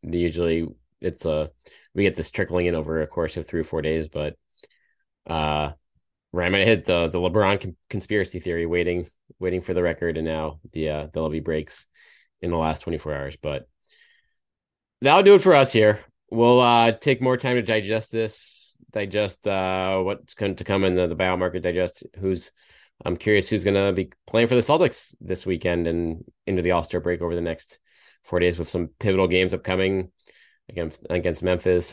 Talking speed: 190 wpm